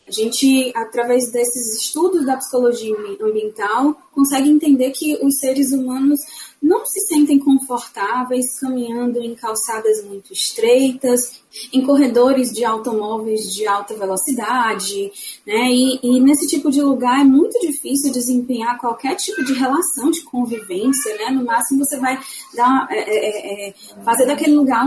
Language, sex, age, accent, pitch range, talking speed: Portuguese, female, 20-39, Brazilian, 230-300 Hz, 135 wpm